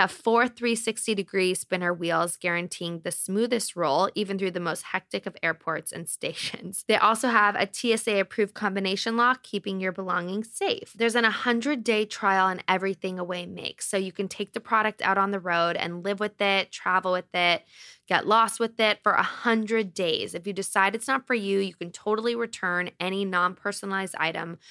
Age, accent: 20-39, American